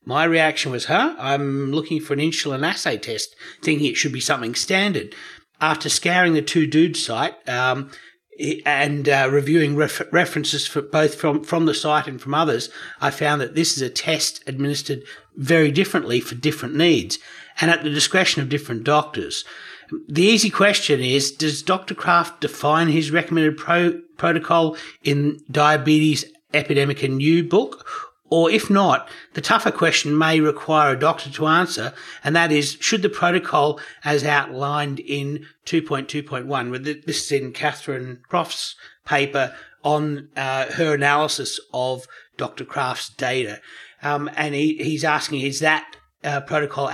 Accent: Australian